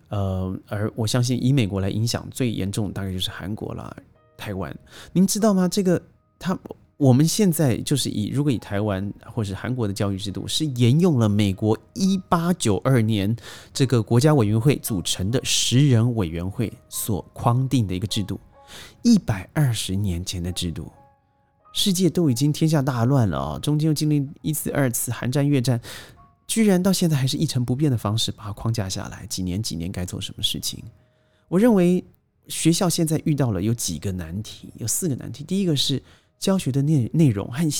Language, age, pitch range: Chinese, 30-49, 105-145 Hz